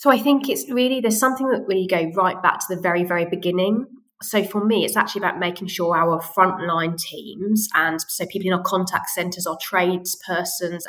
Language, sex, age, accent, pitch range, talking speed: English, female, 20-39, British, 175-210 Hz, 205 wpm